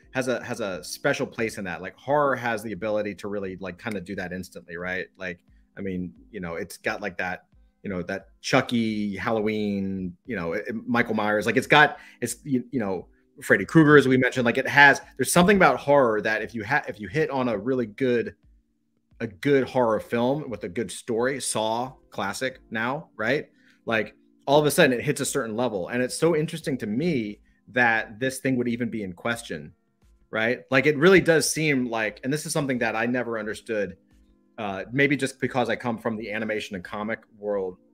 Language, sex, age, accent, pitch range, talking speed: English, male, 30-49, American, 100-145 Hz, 210 wpm